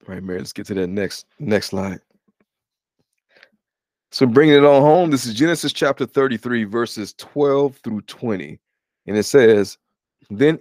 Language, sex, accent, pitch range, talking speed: English, male, American, 105-135 Hz, 160 wpm